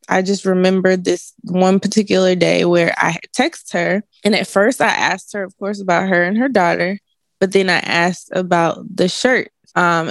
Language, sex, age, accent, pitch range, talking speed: English, female, 20-39, American, 175-200 Hz, 190 wpm